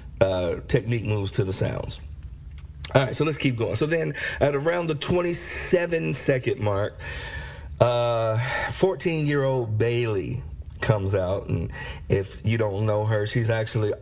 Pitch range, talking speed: 100-135 Hz, 140 wpm